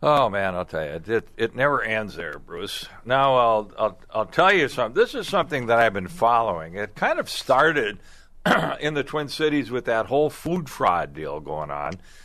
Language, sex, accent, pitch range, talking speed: English, male, American, 95-130 Hz, 205 wpm